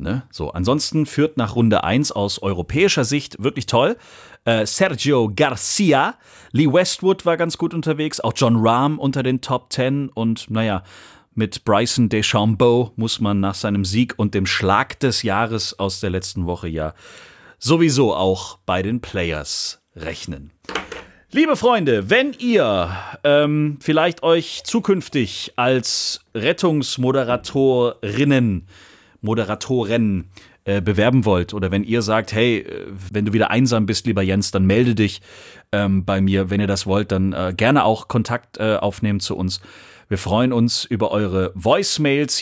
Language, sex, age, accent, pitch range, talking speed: German, male, 40-59, German, 105-145 Hz, 145 wpm